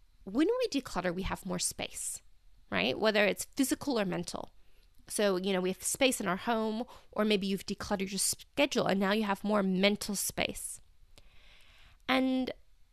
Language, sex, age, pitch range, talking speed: English, female, 20-39, 195-260 Hz, 165 wpm